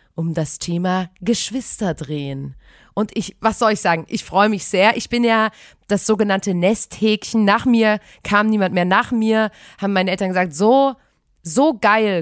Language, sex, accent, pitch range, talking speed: German, female, German, 185-225 Hz, 170 wpm